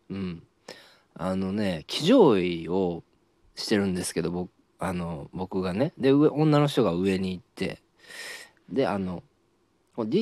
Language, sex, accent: Japanese, male, native